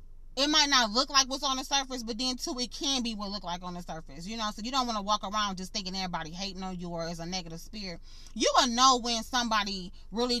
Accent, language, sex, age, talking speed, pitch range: American, English, female, 30-49, 275 wpm, 230-270 Hz